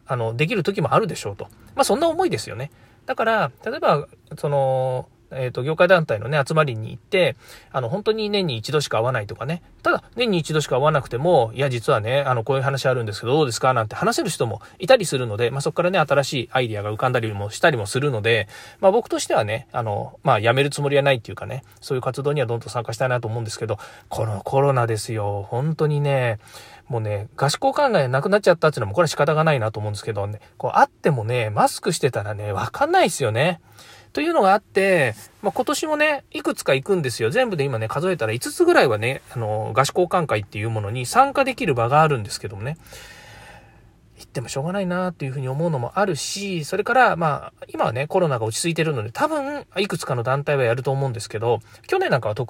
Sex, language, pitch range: male, Japanese, 115-175 Hz